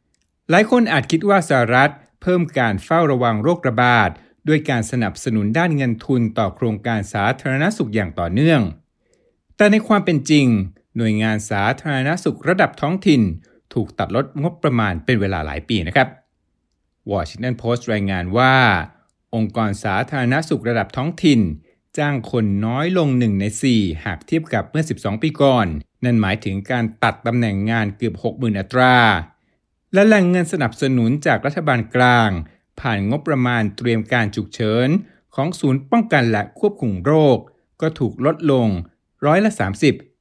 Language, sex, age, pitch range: Thai, male, 60-79, 105-150 Hz